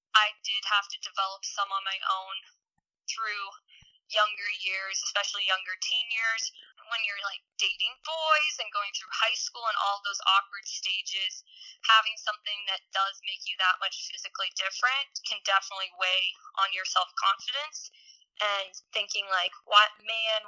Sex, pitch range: female, 195-210 Hz